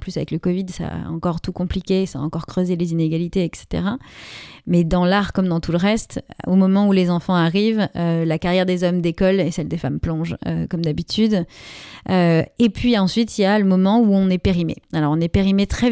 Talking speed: 235 wpm